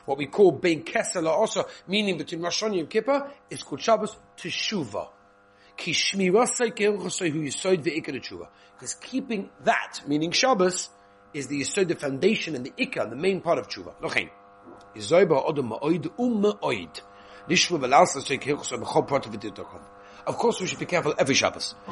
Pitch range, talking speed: 115-195 Hz, 120 wpm